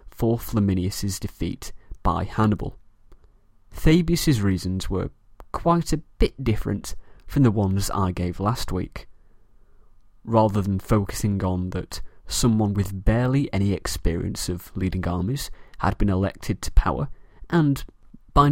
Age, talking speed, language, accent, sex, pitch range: 30-49, 125 wpm, English, British, male, 95-120 Hz